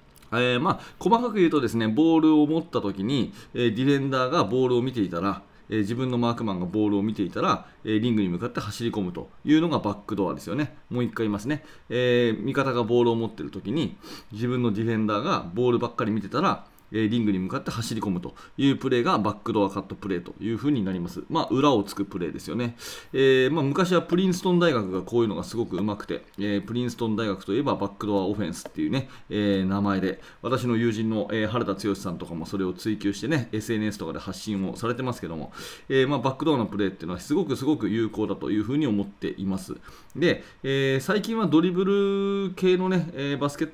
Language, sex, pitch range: Japanese, male, 100-135 Hz